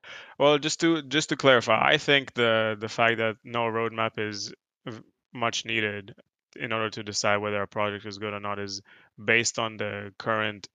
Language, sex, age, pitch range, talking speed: English, male, 20-39, 105-115 Hz, 185 wpm